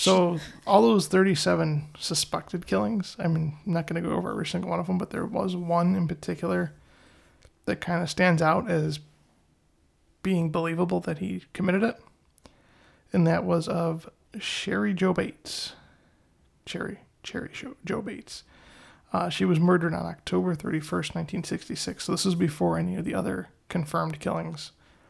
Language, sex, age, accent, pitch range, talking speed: English, male, 20-39, American, 165-185 Hz, 160 wpm